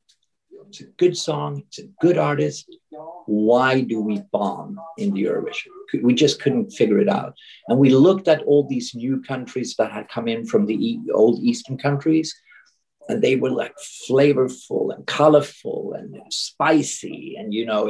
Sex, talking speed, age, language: male, 170 wpm, 50-69, English